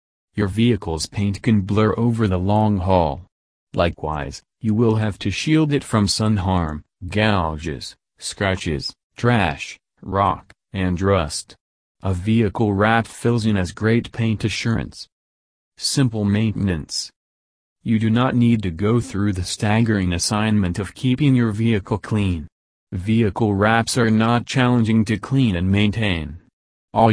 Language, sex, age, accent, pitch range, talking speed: English, male, 40-59, American, 90-115 Hz, 135 wpm